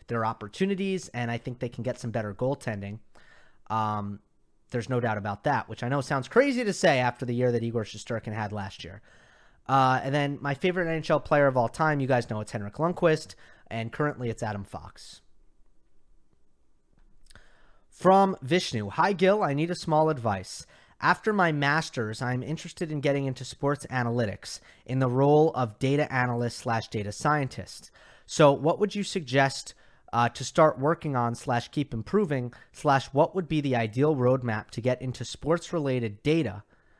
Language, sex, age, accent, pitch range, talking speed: English, male, 30-49, American, 110-150 Hz, 175 wpm